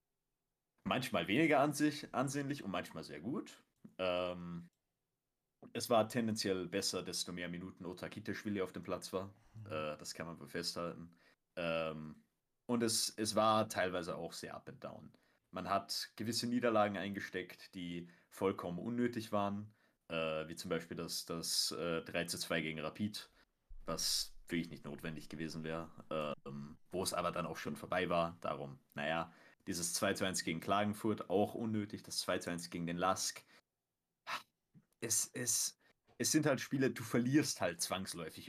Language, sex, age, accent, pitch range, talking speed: German, male, 30-49, German, 85-110 Hz, 155 wpm